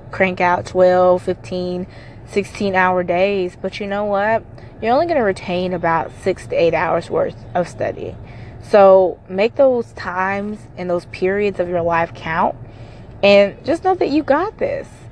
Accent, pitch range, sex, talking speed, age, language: American, 185-260 Hz, female, 165 wpm, 20-39, English